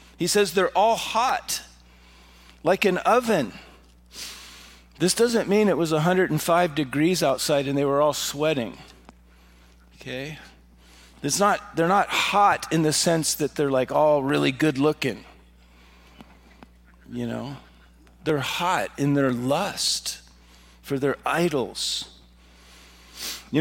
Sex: male